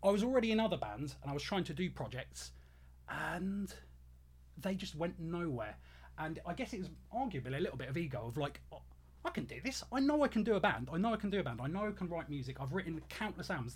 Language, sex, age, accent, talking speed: English, male, 30-49, British, 260 wpm